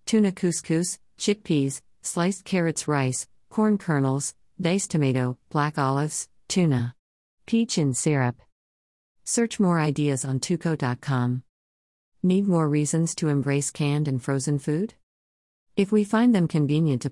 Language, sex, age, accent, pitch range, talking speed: English, female, 50-69, American, 130-170 Hz, 125 wpm